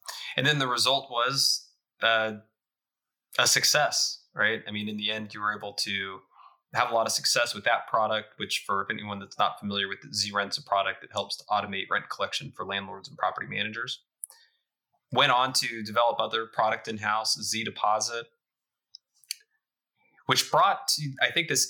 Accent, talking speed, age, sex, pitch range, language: American, 175 wpm, 20-39, male, 105-130 Hz, English